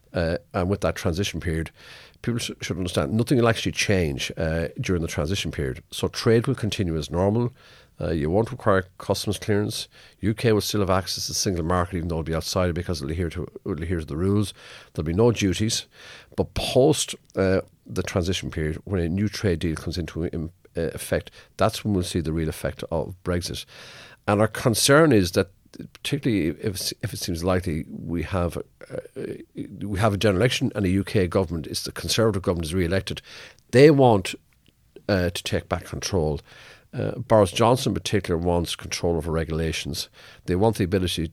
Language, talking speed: English, 190 wpm